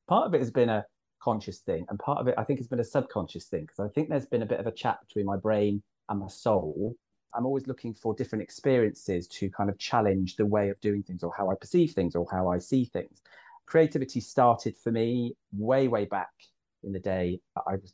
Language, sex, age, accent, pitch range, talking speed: English, male, 30-49, British, 95-120 Hz, 240 wpm